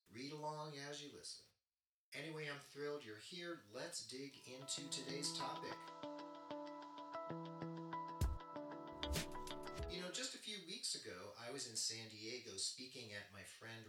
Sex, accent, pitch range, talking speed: male, American, 95-140 Hz, 135 wpm